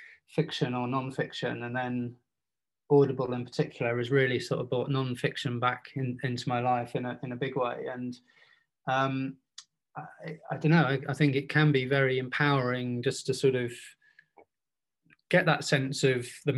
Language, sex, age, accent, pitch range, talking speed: English, male, 20-39, British, 130-155 Hz, 175 wpm